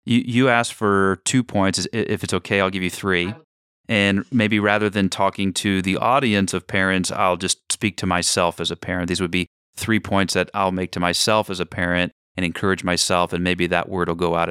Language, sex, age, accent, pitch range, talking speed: English, male, 30-49, American, 90-115 Hz, 220 wpm